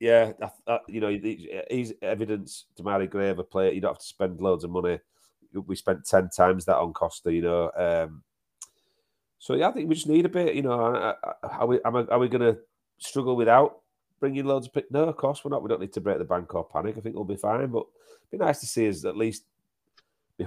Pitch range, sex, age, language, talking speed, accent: 90-120 Hz, male, 30-49, English, 245 wpm, British